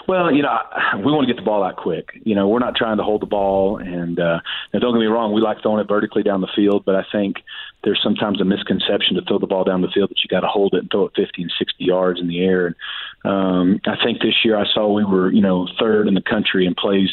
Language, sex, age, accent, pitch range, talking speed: English, male, 40-59, American, 95-110 Hz, 285 wpm